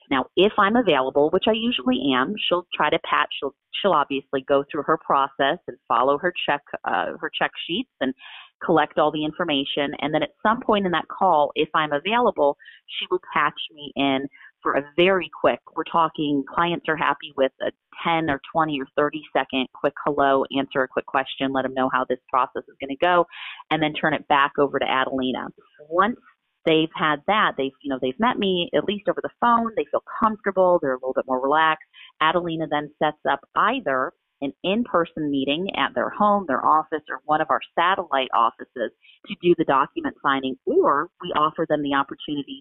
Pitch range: 140-180 Hz